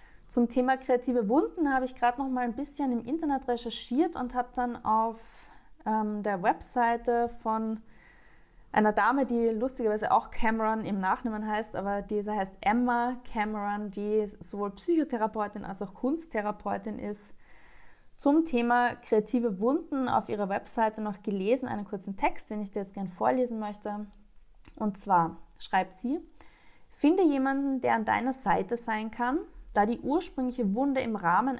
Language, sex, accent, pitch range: German, female, German, 205-255 Hz